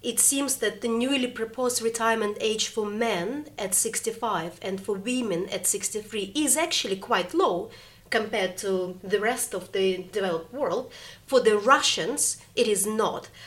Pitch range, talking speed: 205-255 Hz, 155 wpm